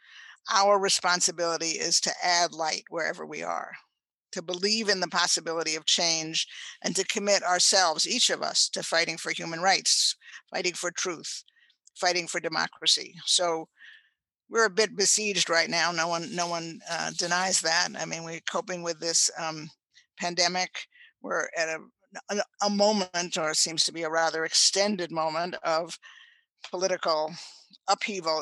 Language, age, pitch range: English, 50-69, 165-200 Hz